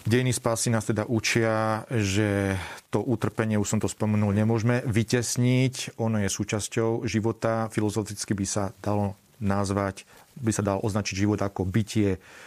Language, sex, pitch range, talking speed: Slovak, male, 100-115 Hz, 140 wpm